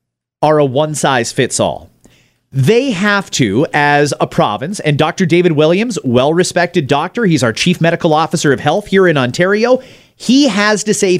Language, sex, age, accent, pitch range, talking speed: English, male, 30-49, American, 150-210 Hz, 175 wpm